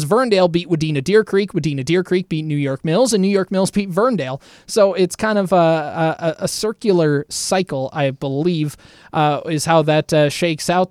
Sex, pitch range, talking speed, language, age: male, 150-190 Hz, 185 wpm, English, 20-39